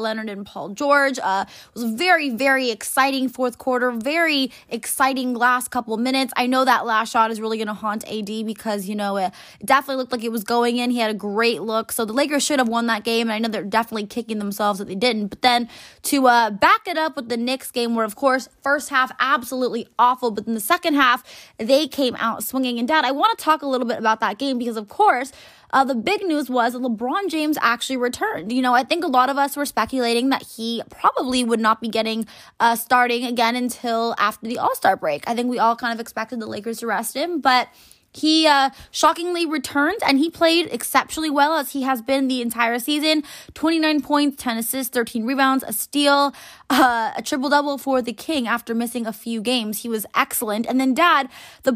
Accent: American